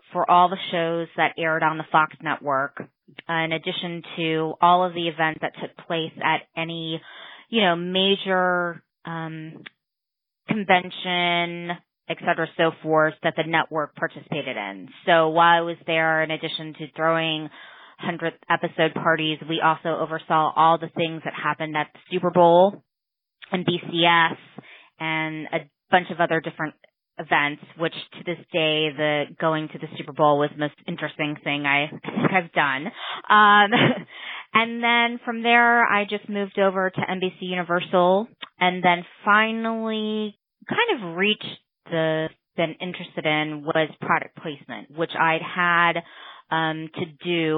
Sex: female